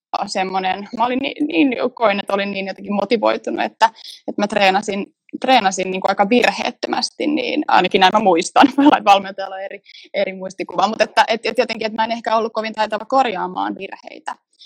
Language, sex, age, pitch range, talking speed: Finnish, female, 20-39, 185-245 Hz, 170 wpm